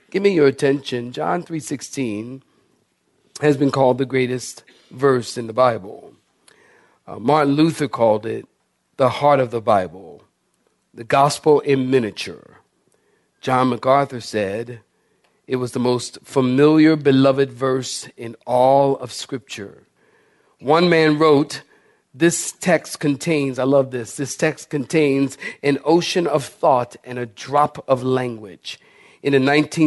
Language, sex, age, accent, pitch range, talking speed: English, male, 50-69, American, 125-150 Hz, 135 wpm